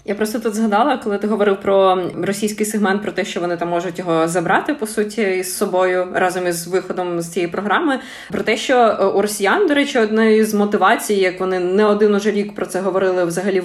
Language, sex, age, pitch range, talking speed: Ukrainian, female, 20-39, 185-220 Hz, 210 wpm